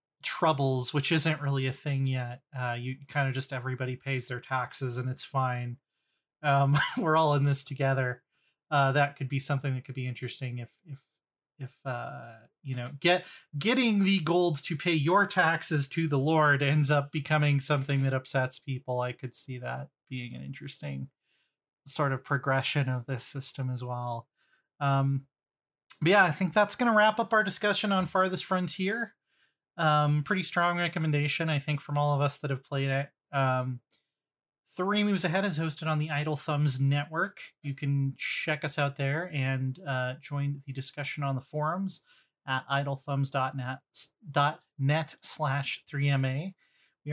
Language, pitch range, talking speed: English, 135-160 Hz, 165 wpm